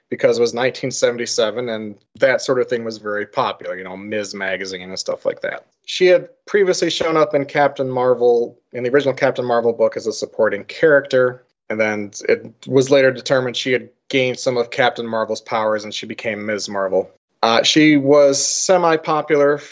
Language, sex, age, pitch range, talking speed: English, male, 30-49, 120-150 Hz, 185 wpm